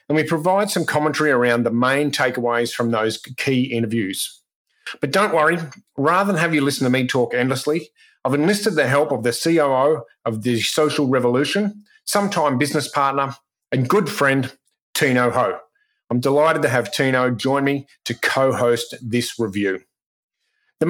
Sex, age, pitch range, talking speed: male, 30-49, 120-155 Hz, 160 wpm